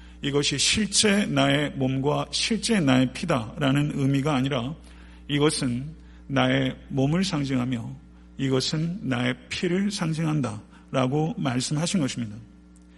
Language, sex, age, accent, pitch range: Korean, male, 50-69, native, 120-160 Hz